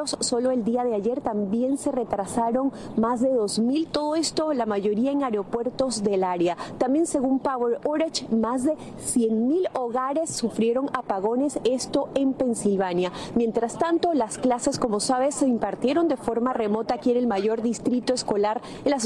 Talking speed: 160 wpm